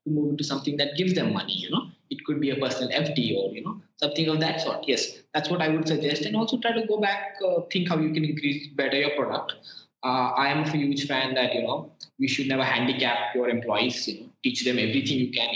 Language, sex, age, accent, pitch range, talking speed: Hindi, male, 20-39, native, 110-135 Hz, 250 wpm